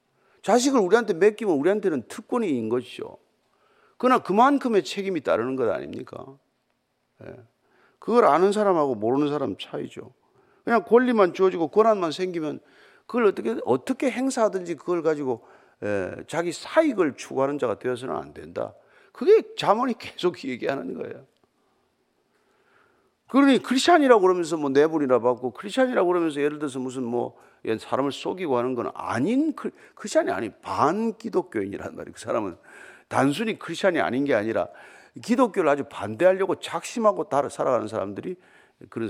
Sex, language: male, Korean